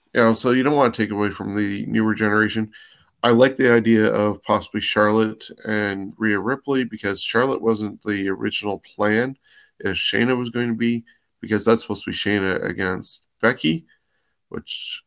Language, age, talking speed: English, 20-39, 180 wpm